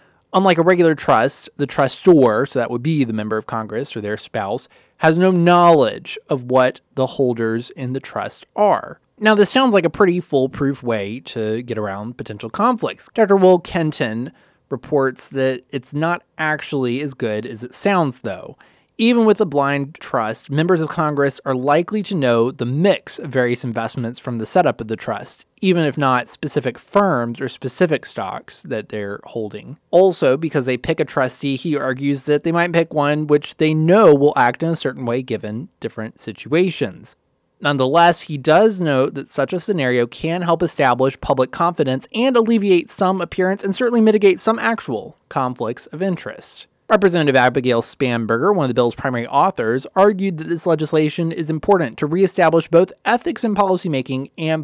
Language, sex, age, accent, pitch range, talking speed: English, male, 20-39, American, 125-175 Hz, 175 wpm